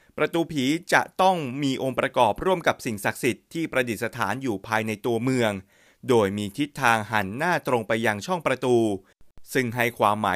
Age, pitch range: 30-49, 110-145 Hz